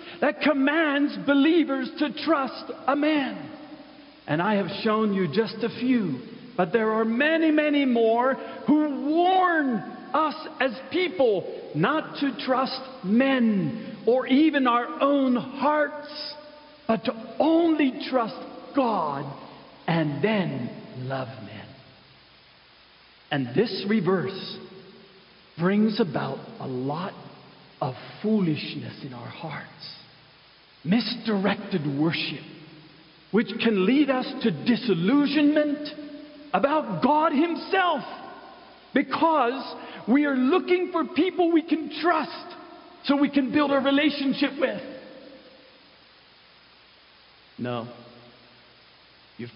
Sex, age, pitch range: male, 50-69, 180-295 Hz